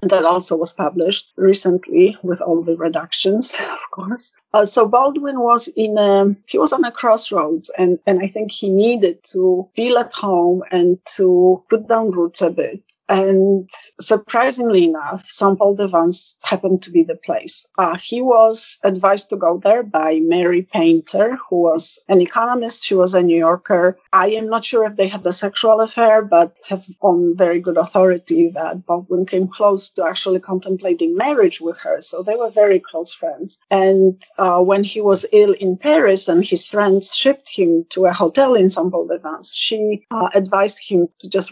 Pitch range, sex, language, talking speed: 180-225 Hz, female, English, 180 wpm